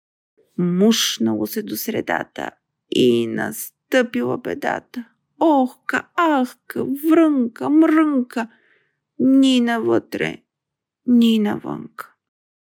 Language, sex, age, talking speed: Bulgarian, female, 50-69, 70 wpm